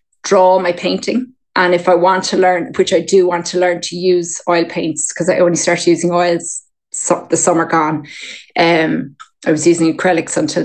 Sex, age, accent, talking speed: female, 20-39, Irish, 195 wpm